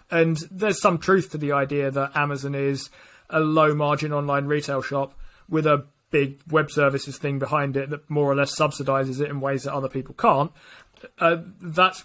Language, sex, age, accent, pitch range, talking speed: English, male, 30-49, British, 145-175 Hz, 185 wpm